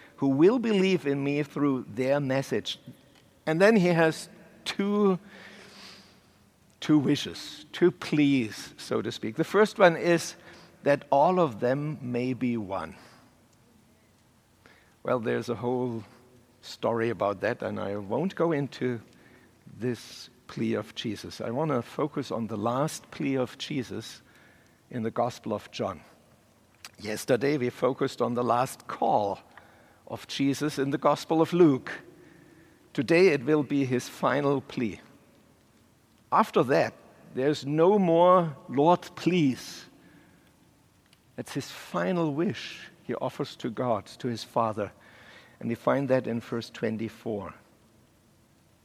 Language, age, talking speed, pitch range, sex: English, 60-79, 135 wpm, 115-155 Hz, male